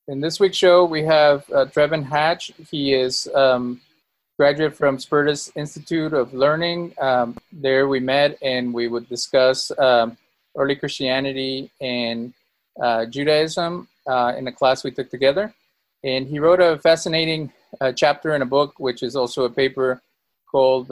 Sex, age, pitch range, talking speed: male, 30-49, 125-150 Hz, 160 wpm